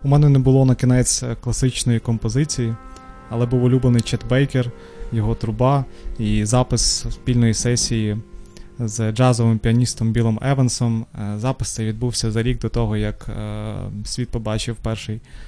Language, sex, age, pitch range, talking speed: Ukrainian, male, 20-39, 105-125 Hz, 135 wpm